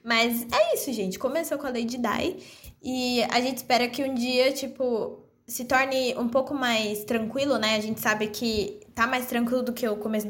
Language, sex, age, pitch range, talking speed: Portuguese, female, 10-29, 240-295 Hz, 205 wpm